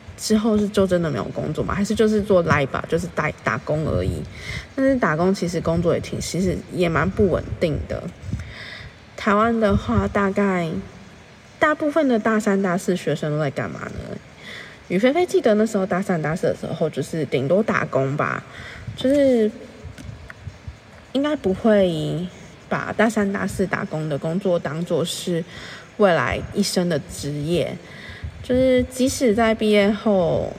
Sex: female